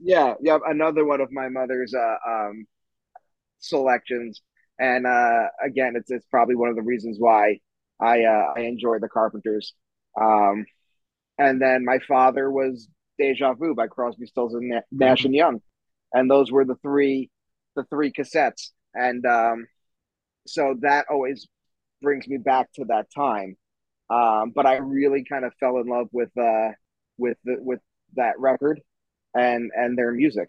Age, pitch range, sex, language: 20-39, 115-135 Hz, male, English